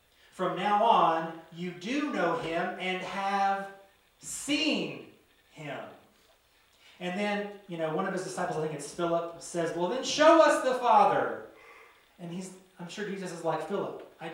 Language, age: English, 30-49